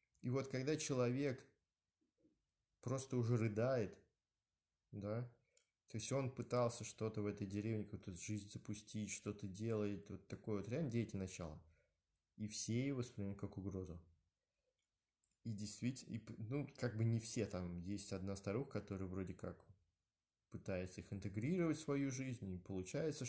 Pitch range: 95-125 Hz